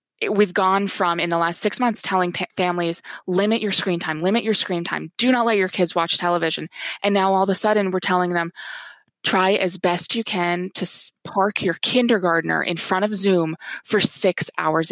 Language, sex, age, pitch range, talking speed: English, female, 20-39, 175-200 Hz, 205 wpm